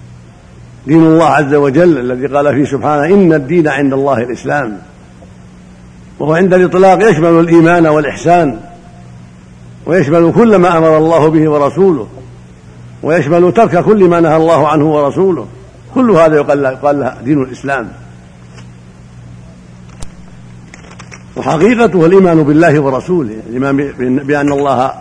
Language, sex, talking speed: Arabic, male, 115 wpm